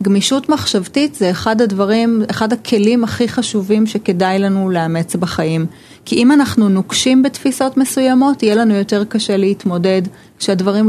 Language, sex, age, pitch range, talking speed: Hebrew, female, 30-49, 185-250 Hz, 140 wpm